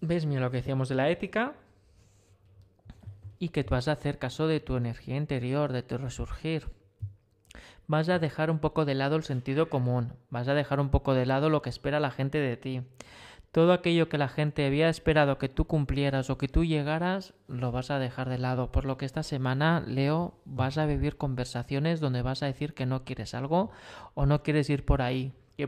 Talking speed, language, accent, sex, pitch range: 215 wpm, Spanish, Spanish, male, 130-155 Hz